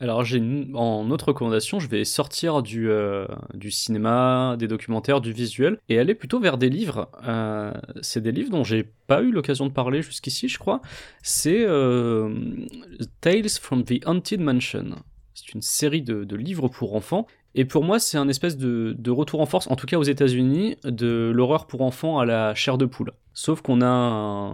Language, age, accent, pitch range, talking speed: French, 20-39, French, 115-145 Hz, 200 wpm